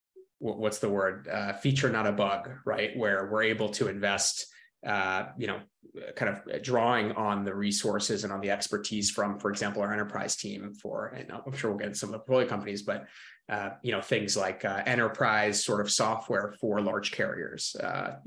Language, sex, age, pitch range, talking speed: English, male, 20-39, 100-110 Hz, 190 wpm